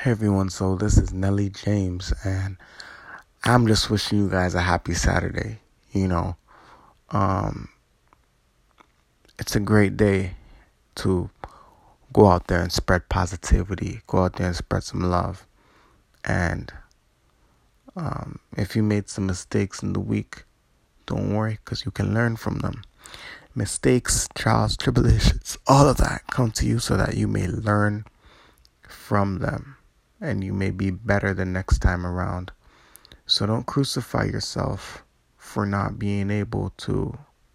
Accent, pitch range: American, 95-110 Hz